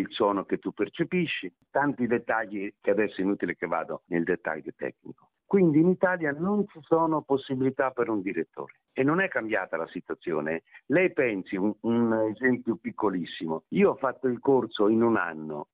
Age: 50-69